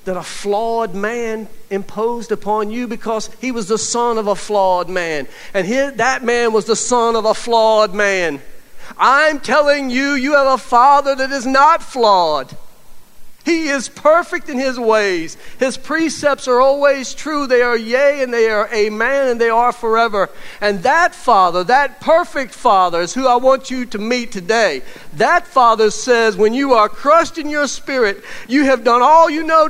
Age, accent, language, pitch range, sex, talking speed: 50-69, American, English, 230-310 Hz, male, 180 wpm